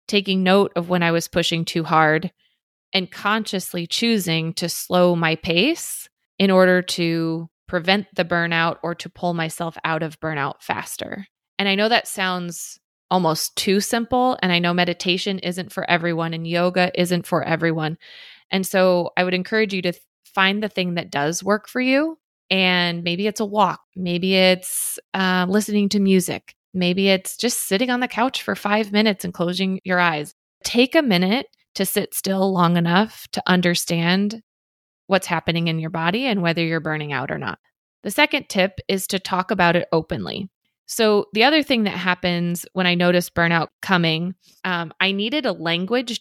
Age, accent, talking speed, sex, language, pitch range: 20-39, American, 180 wpm, female, English, 170-200 Hz